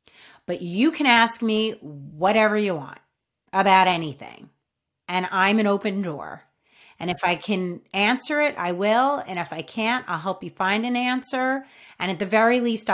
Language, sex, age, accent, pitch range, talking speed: English, female, 30-49, American, 185-245 Hz, 175 wpm